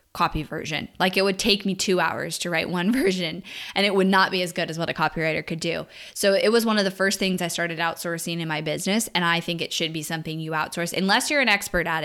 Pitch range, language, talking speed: 170-205 Hz, English, 270 wpm